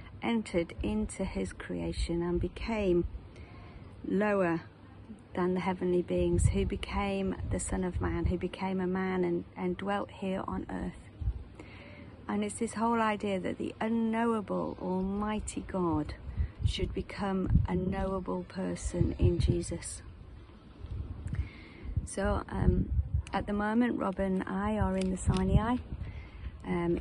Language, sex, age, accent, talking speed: English, female, 50-69, British, 125 wpm